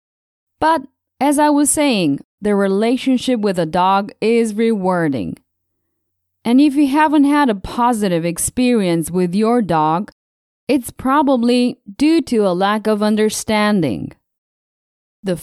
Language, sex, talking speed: English, female, 125 wpm